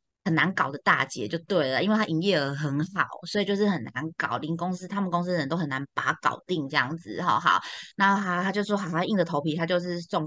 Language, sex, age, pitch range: Chinese, female, 20-39, 165-210 Hz